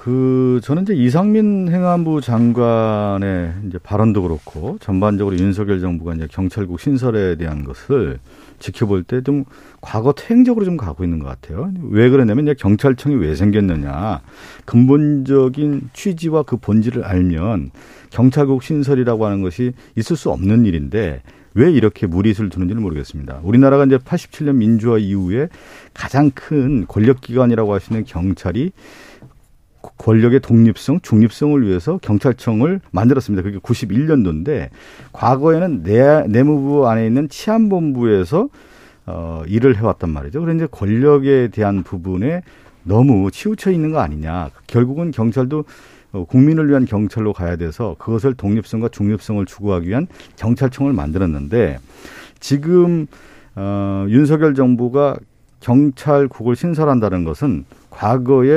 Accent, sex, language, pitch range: native, male, Korean, 100-140 Hz